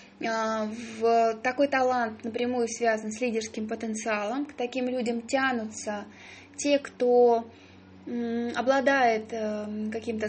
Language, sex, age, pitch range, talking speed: Russian, female, 20-39, 220-255 Hz, 95 wpm